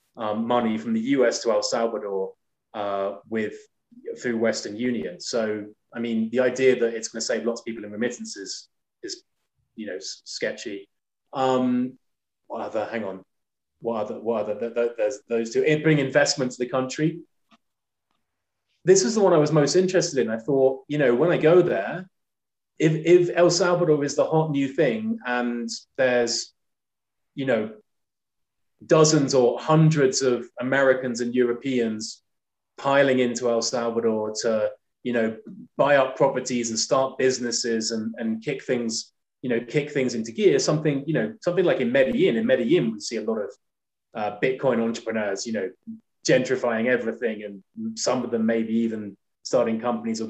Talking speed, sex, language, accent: 175 wpm, male, English, British